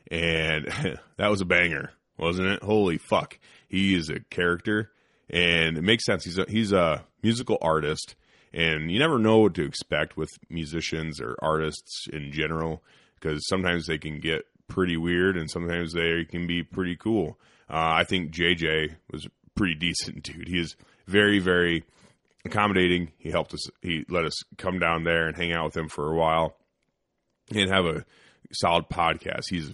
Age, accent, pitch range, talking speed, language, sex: 30-49, American, 80-100 Hz, 175 wpm, English, male